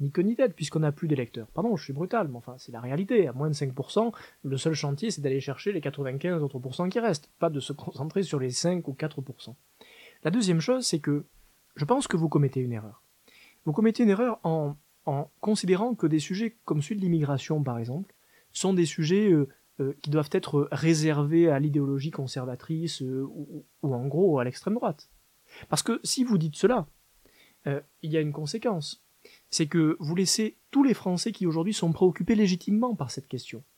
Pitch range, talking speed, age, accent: 140-195 Hz, 205 wpm, 20-39, French